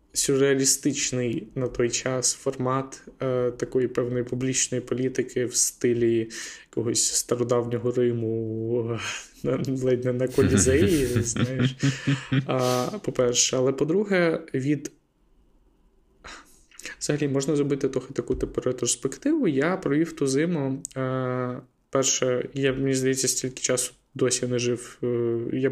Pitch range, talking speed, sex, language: 125-145 Hz, 110 wpm, male, Ukrainian